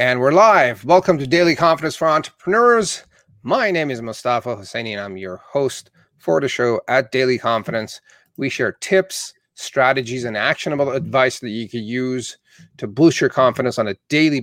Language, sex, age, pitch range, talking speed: English, male, 30-49, 125-150 Hz, 175 wpm